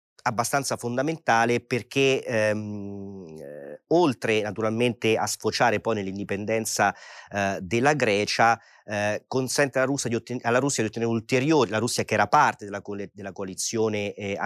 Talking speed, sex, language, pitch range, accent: 120 wpm, male, Italian, 105-125 Hz, native